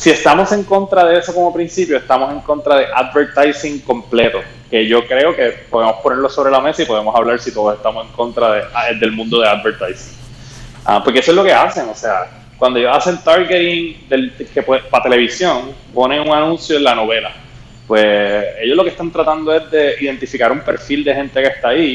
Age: 20-39